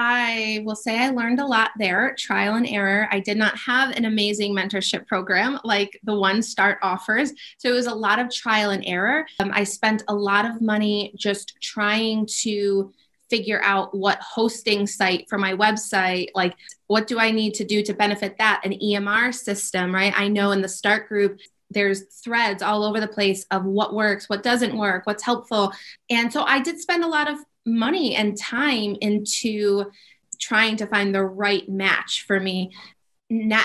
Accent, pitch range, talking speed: American, 200-235 Hz, 190 wpm